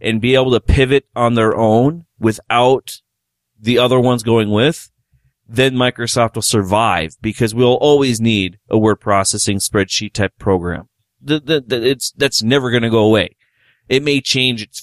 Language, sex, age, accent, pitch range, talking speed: English, male, 30-49, American, 105-125 Hz, 155 wpm